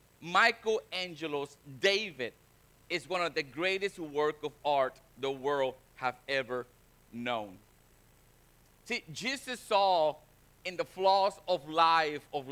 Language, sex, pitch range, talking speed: English, male, 150-195 Hz, 115 wpm